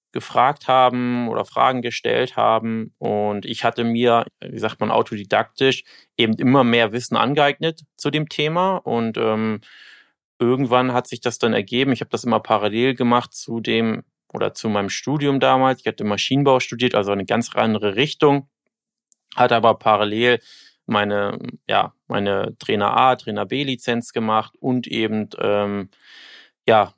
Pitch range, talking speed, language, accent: 105-125 Hz, 150 wpm, German, German